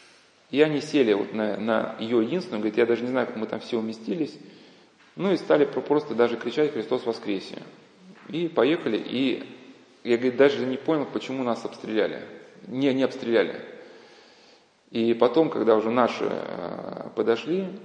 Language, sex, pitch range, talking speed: Russian, male, 115-150 Hz, 155 wpm